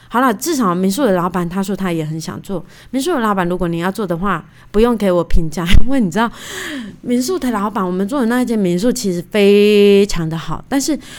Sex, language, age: female, Chinese, 20-39